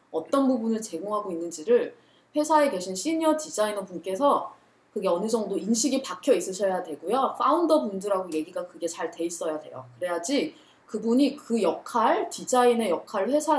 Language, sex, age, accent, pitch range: Korean, female, 20-39, native, 195-300 Hz